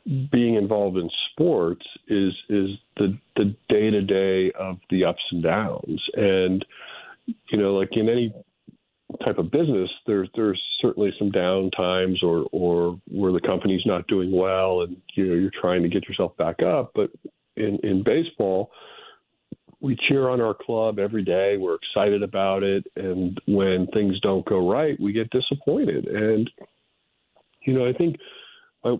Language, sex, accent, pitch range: English, male, American, 95-115 Hz